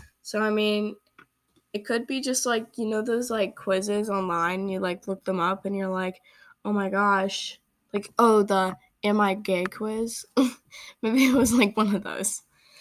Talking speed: 185 wpm